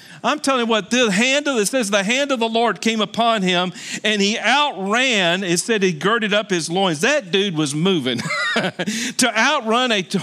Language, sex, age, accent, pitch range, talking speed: English, male, 50-69, American, 180-230 Hz, 205 wpm